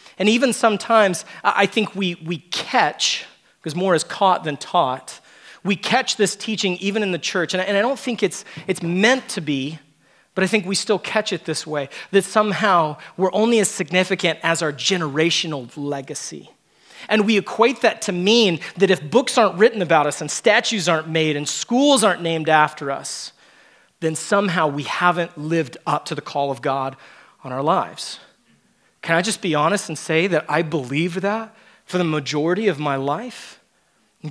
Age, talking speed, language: 30-49, 185 wpm, English